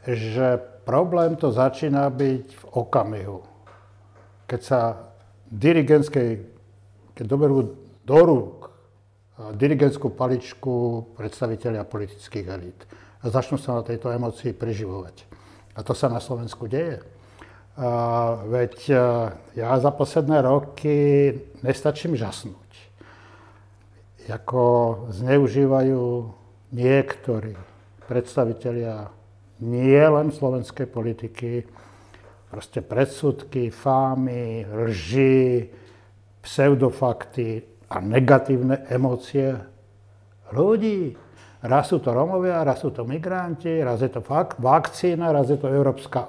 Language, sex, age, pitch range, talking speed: Slovak, male, 60-79, 110-140 Hz, 90 wpm